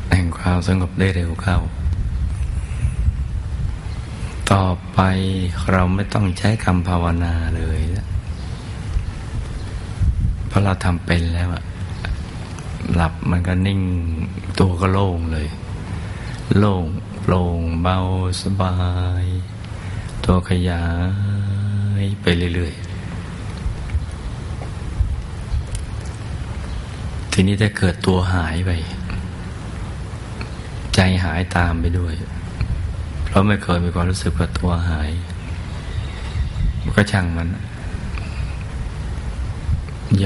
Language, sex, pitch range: Thai, male, 85-95 Hz